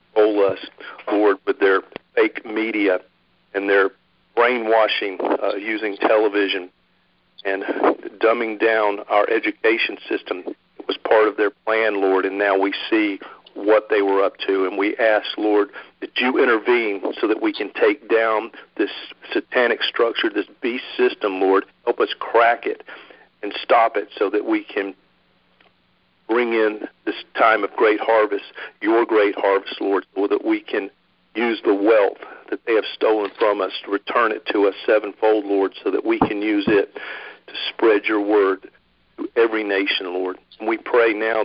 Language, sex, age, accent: Japanese, male, 50-69, American